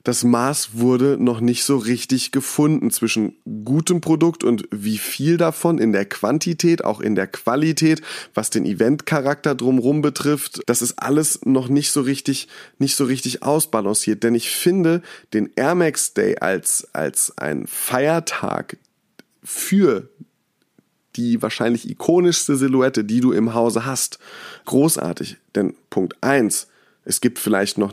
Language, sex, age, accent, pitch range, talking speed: German, male, 30-49, German, 115-150 Hz, 145 wpm